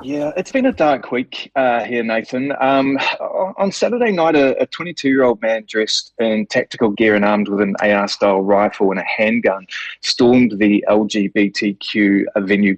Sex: male